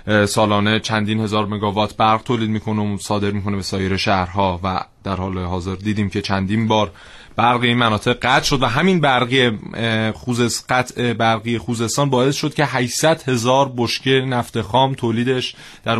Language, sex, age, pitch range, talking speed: Persian, male, 30-49, 110-130 Hz, 155 wpm